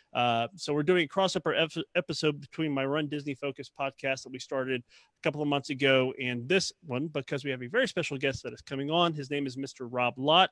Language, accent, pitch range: English, American, 130-160 Hz